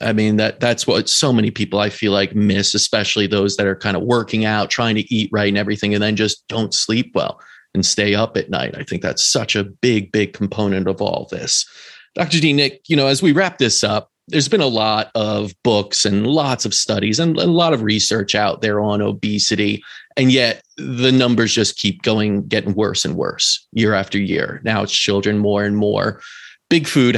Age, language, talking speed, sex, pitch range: 30-49, English, 220 wpm, male, 105-130 Hz